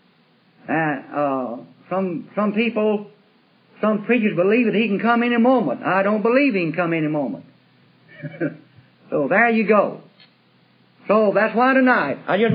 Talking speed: 155 wpm